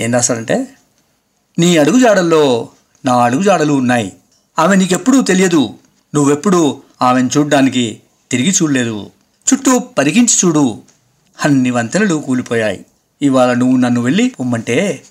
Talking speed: 100 wpm